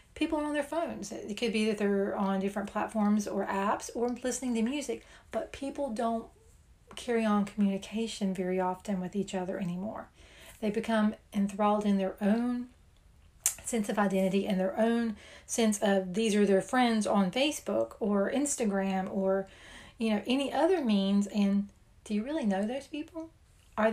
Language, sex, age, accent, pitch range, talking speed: English, female, 40-59, American, 195-235 Hz, 165 wpm